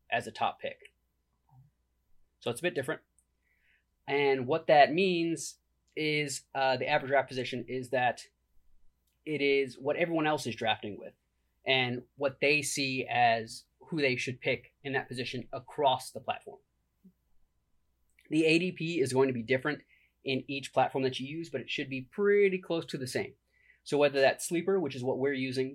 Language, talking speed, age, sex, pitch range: English, 175 wpm, 30-49, male, 120-140 Hz